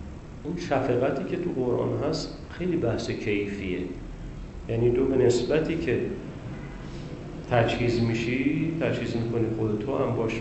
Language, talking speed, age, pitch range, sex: Persian, 120 wpm, 40-59, 120-155 Hz, male